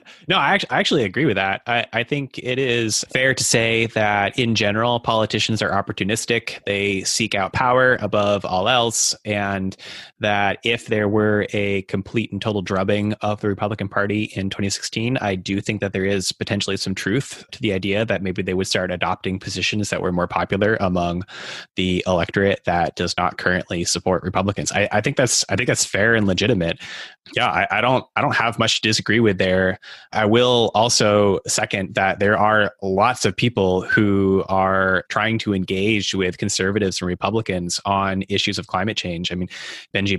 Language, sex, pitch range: English, male, 95-110 Hz